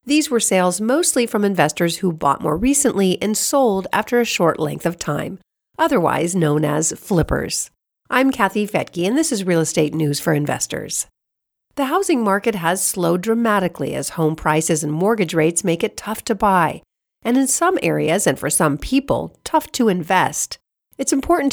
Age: 50-69